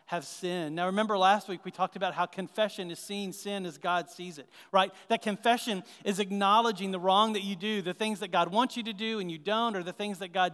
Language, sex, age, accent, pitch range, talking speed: English, male, 40-59, American, 170-215 Hz, 250 wpm